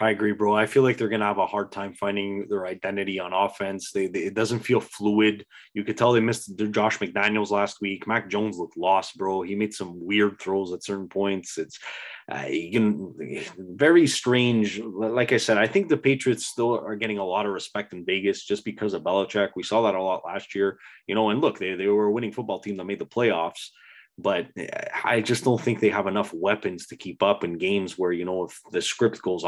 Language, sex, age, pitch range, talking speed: English, male, 20-39, 95-110 Hz, 235 wpm